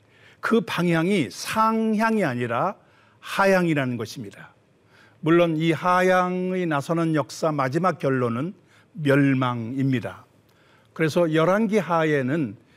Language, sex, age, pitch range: Korean, male, 50-69, 130-190 Hz